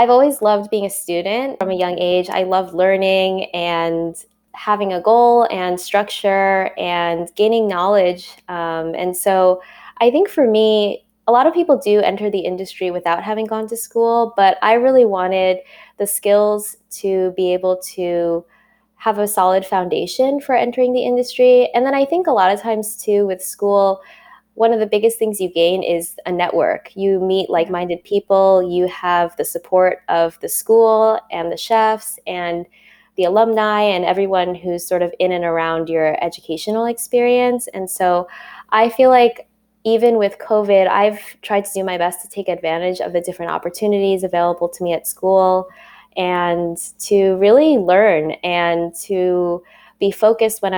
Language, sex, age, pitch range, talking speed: English, female, 20-39, 180-220 Hz, 170 wpm